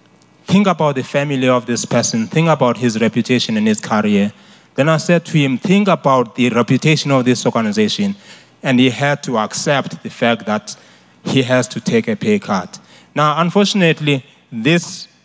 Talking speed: 175 wpm